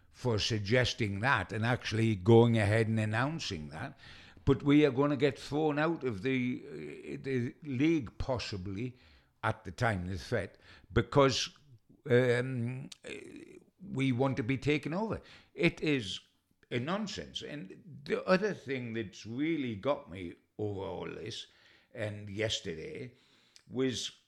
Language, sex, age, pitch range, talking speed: English, male, 60-79, 95-130 Hz, 140 wpm